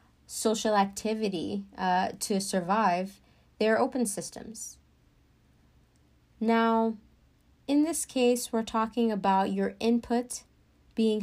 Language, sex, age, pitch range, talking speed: English, female, 20-39, 185-225 Hz, 100 wpm